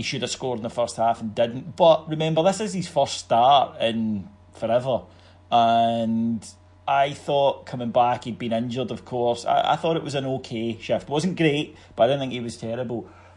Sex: male